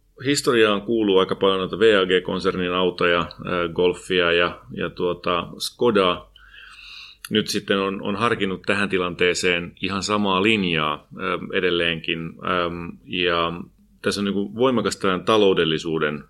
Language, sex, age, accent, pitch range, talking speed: Finnish, male, 30-49, native, 85-100 Hz, 110 wpm